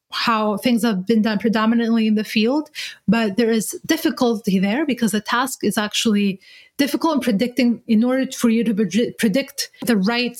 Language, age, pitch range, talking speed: English, 30-49, 220-275 Hz, 175 wpm